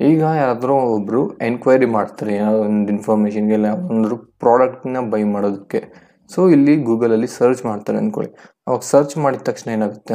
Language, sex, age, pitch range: Kannada, male, 20-39, 110-130 Hz